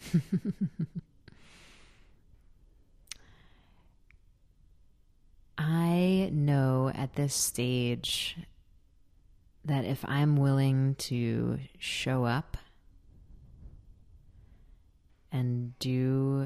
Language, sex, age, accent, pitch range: English, female, 30-49, American, 110-140 Hz